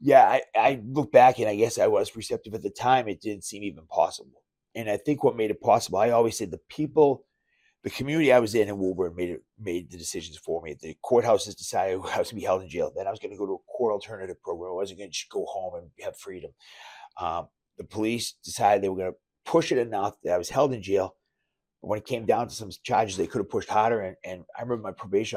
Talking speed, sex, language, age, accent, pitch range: 265 wpm, male, English, 30-49, American, 100-145 Hz